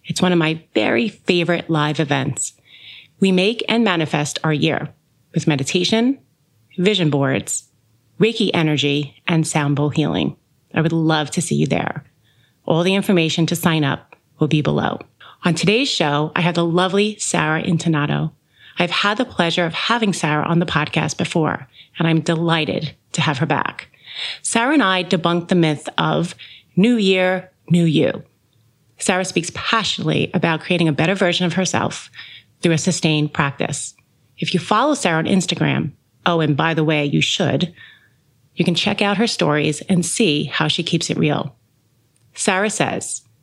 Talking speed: 165 wpm